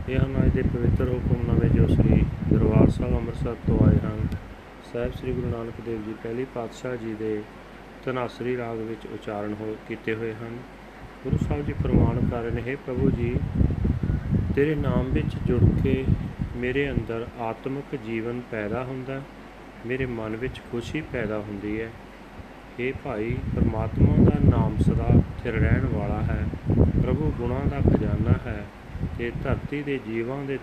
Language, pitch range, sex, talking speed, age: Punjabi, 110-130 Hz, male, 155 wpm, 30-49